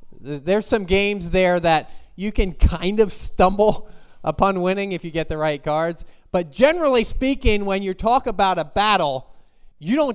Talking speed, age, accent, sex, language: 170 wpm, 30-49, American, male, English